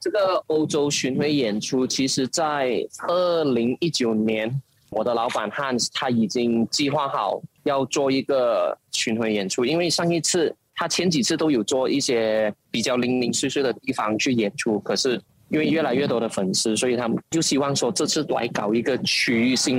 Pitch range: 115-170 Hz